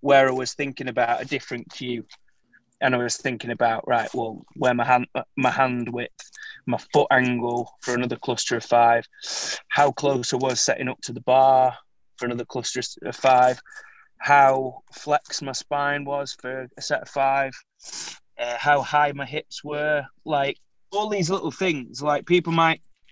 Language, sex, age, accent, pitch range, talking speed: English, male, 20-39, British, 125-150 Hz, 175 wpm